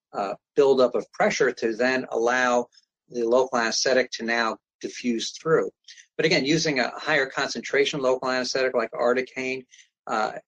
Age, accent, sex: 50-69, American, male